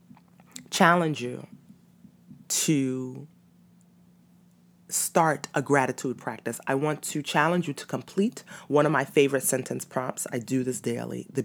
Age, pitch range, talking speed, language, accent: 30-49, 140-180 Hz, 145 wpm, English, American